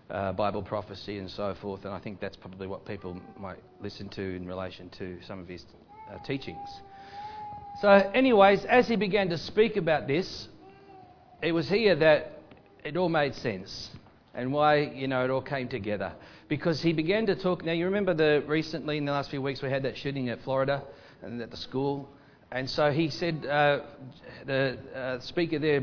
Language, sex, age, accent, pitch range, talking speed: English, male, 40-59, Australian, 115-155 Hz, 195 wpm